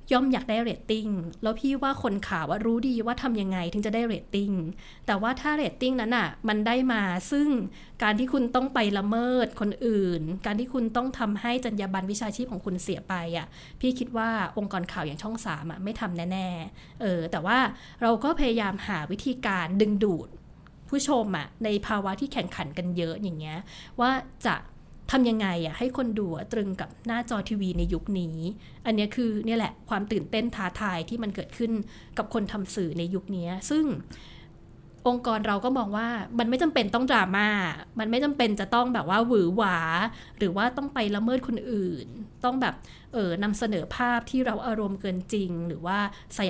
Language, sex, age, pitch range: Thai, female, 20-39, 190-235 Hz